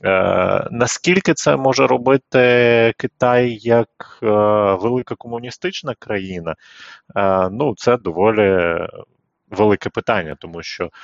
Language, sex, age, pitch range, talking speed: Ukrainian, male, 30-49, 85-120 Hz, 105 wpm